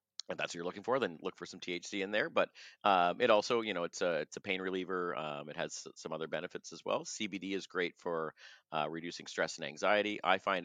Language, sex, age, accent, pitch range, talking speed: English, male, 40-59, American, 80-100 Hz, 250 wpm